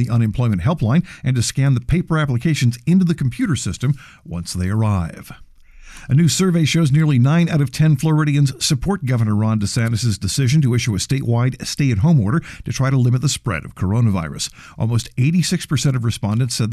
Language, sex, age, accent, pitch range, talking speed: English, male, 50-69, American, 110-145 Hz, 180 wpm